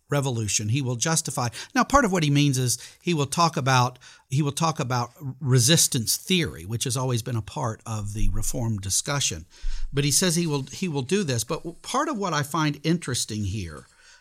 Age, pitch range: 50-69, 115-150 Hz